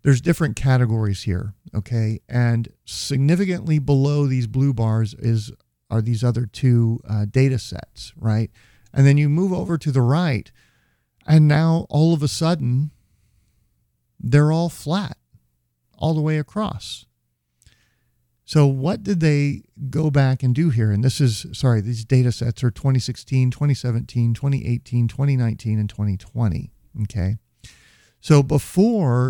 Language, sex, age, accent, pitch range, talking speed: English, male, 50-69, American, 110-140 Hz, 135 wpm